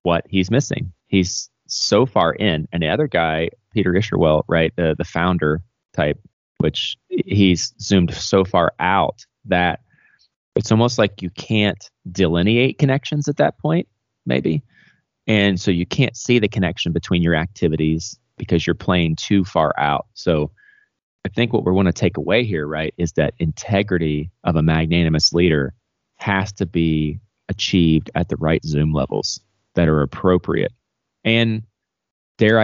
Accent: American